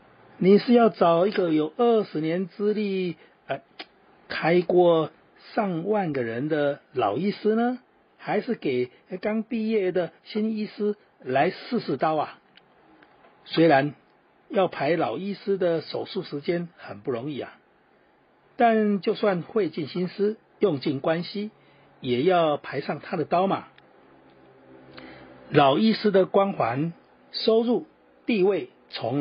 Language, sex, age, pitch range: Chinese, male, 50-69, 160-210 Hz